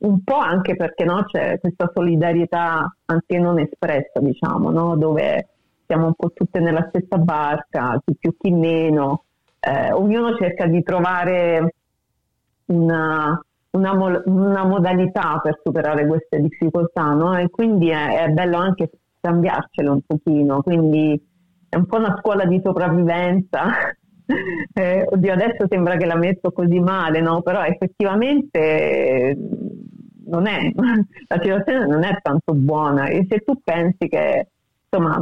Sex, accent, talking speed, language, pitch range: female, native, 140 wpm, Italian, 155-185 Hz